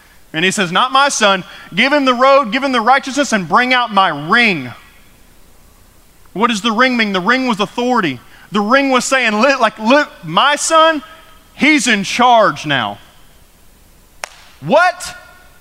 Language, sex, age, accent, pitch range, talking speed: English, male, 30-49, American, 185-255 Hz, 160 wpm